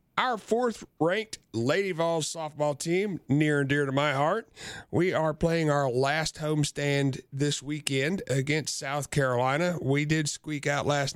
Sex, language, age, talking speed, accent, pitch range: male, English, 40-59, 150 wpm, American, 125-165 Hz